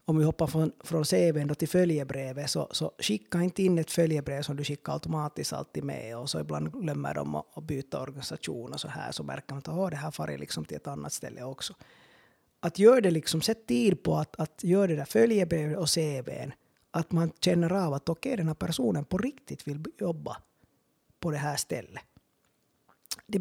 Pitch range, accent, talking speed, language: 145-180 Hz, Finnish, 210 wpm, Swedish